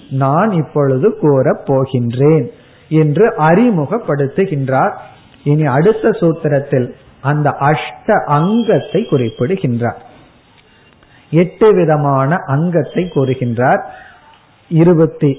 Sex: male